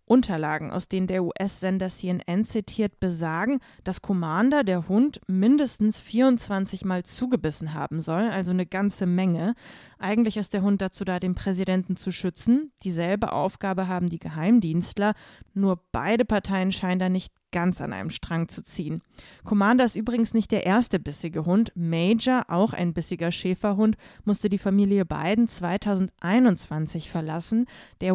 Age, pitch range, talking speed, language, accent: 20-39, 170-210 Hz, 150 wpm, German, German